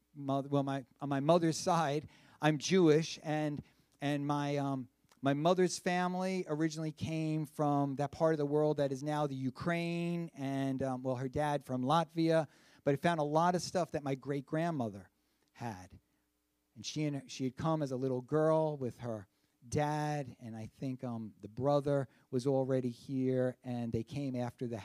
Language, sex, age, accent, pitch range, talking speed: English, male, 50-69, American, 115-150 Hz, 185 wpm